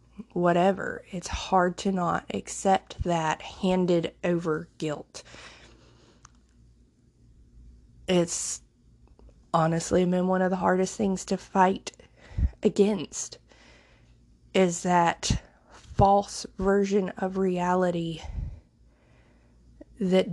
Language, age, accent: English, 20-39, American